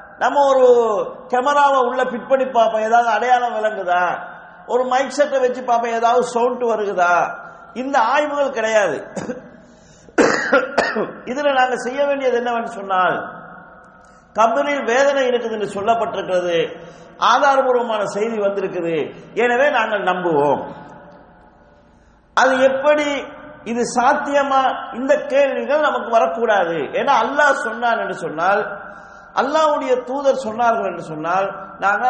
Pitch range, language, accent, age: 205-270 Hz, English, Indian, 50-69